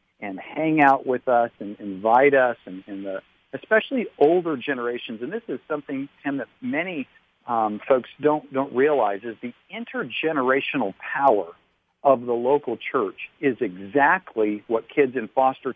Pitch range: 110-155 Hz